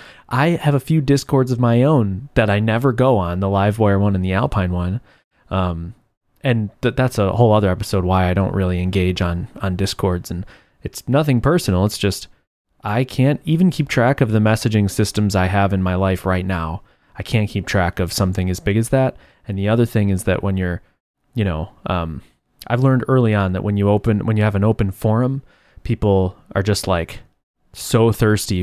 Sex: male